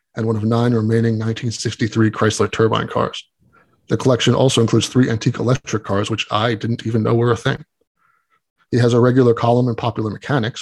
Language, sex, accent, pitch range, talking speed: English, male, American, 110-125 Hz, 185 wpm